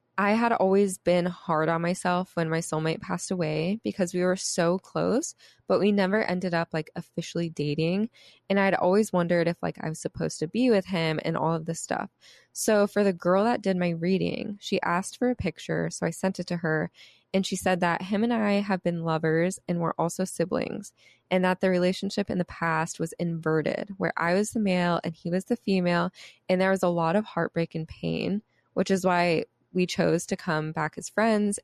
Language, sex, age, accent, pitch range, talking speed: English, female, 20-39, American, 165-195 Hz, 215 wpm